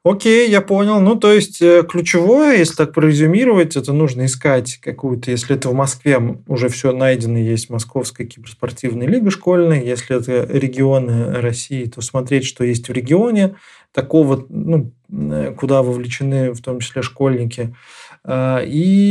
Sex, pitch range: male, 125-165 Hz